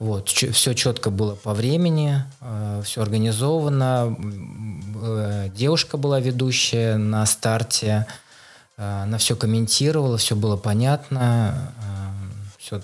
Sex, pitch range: male, 105-125 Hz